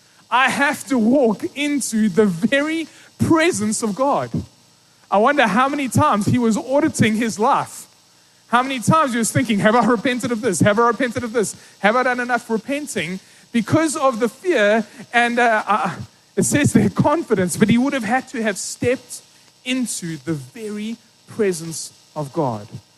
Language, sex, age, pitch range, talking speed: English, male, 30-49, 175-250 Hz, 170 wpm